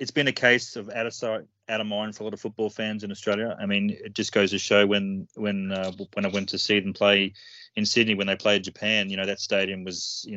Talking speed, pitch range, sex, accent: 280 wpm, 95-110 Hz, male, Australian